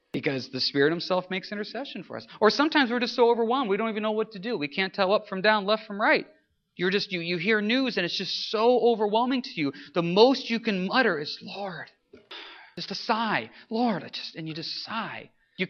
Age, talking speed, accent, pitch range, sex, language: 40-59, 235 wpm, American, 165-225 Hz, male, English